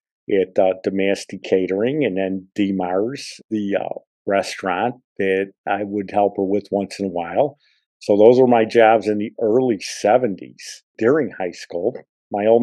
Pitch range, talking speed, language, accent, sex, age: 105-120 Hz, 160 wpm, English, American, male, 50-69